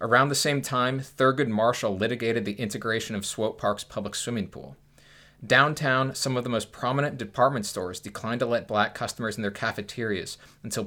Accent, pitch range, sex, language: American, 105-125 Hz, male, English